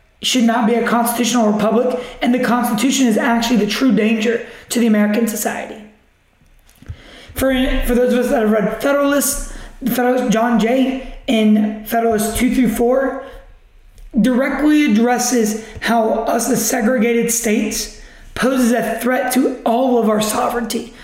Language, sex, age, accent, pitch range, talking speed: English, male, 20-39, American, 225-250 Hz, 140 wpm